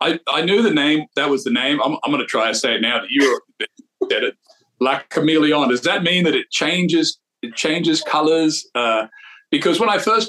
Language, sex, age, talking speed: English, male, 40-59, 220 wpm